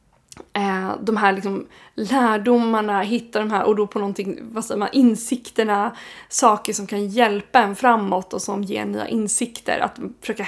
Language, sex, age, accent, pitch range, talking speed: Swedish, female, 20-39, native, 200-240 Hz, 160 wpm